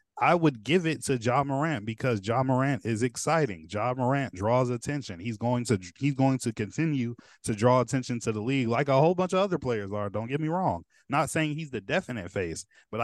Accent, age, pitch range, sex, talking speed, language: American, 20-39, 100-130 Hz, male, 220 wpm, English